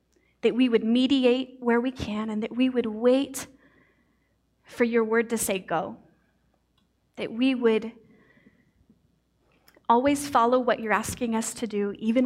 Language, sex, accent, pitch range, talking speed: English, female, American, 210-235 Hz, 145 wpm